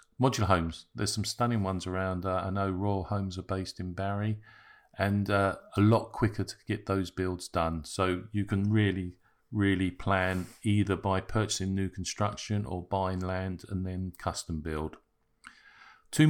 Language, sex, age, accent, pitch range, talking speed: English, male, 50-69, British, 90-105 Hz, 165 wpm